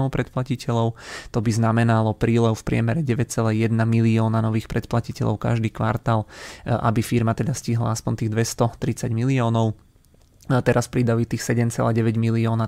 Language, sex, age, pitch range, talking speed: Czech, male, 20-39, 115-120 Hz, 120 wpm